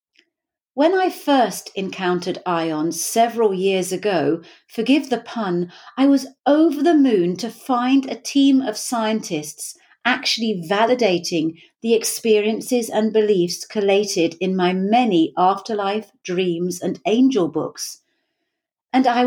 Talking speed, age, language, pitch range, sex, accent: 120 wpm, 50-69, English, 185-255 Hz, female, British